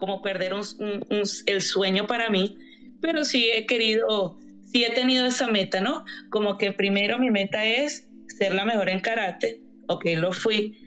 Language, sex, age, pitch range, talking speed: English, female, 20-39, 195-250 Hz, 190 wpm